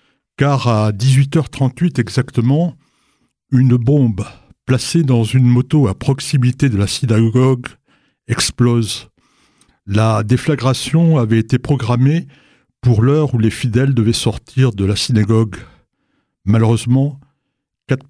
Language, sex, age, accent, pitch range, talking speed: French, male, 60-79, French, 115-135 Hz, 110 wpm